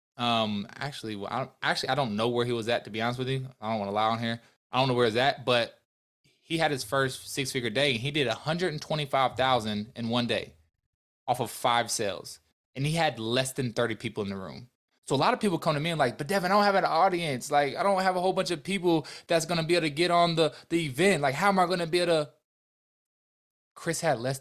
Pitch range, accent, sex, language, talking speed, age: 115-155 Hz, American, male, English, 265 wpm, 20-39